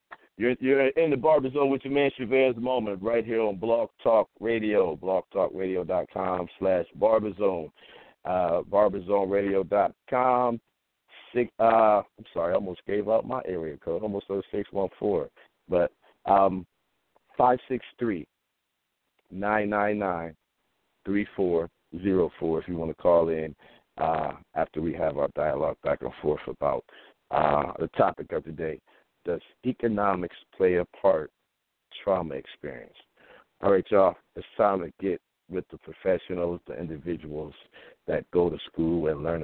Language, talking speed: English, 155 wpm